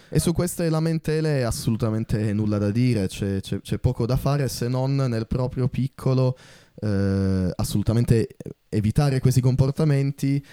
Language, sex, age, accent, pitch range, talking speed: Italian, male, 10-29, native, 100-135 Hz, 140 wpm